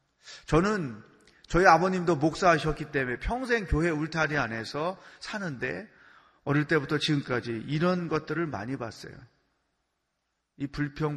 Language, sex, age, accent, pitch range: Korean, male, 30-49, native, 130-165 Hz